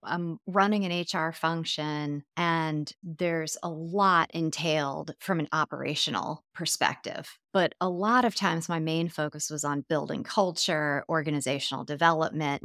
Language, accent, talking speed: English, American, 135 wpm